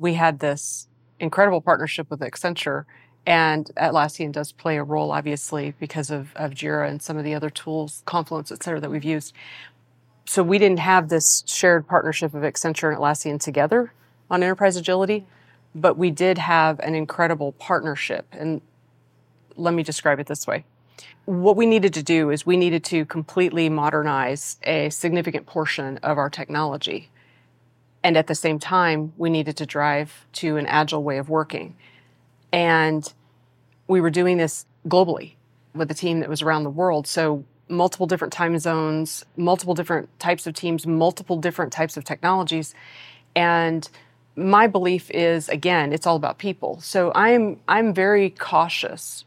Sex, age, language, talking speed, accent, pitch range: female, 30-49, English, 165 wpm, American, 150-175 Hz